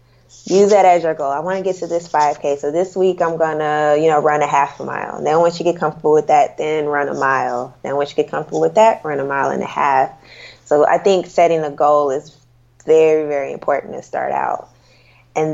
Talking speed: 245 wpm